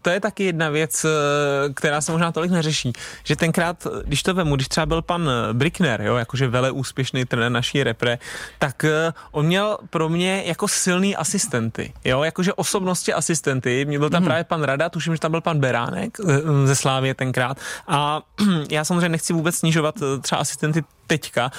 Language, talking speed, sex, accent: Czech, 170 wpm, male, native